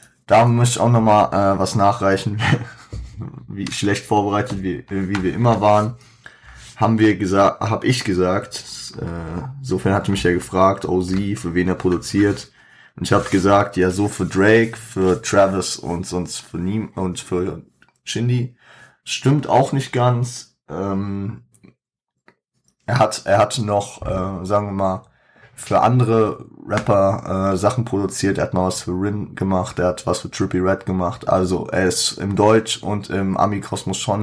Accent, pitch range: German, 90-110 Hz